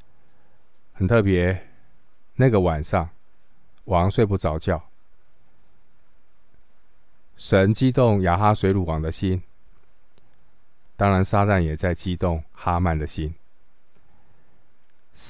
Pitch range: 85-105 Hz